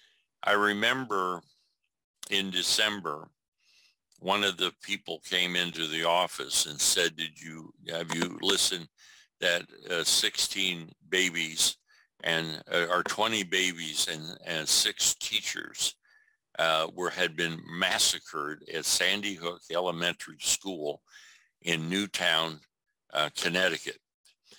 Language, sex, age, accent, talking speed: English, male, 60-79, American, 110 wpm